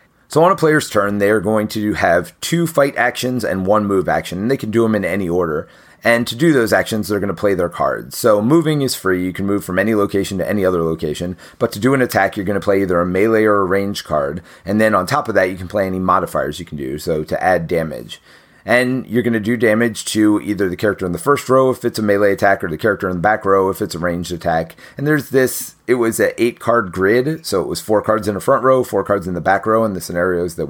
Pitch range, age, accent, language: 95-120 Hz, 30-49, American, English